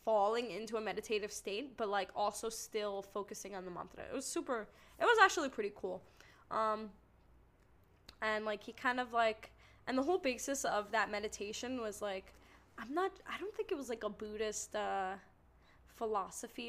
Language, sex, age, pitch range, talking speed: English, female, 10-29, 210-255 Hz, 175 wpm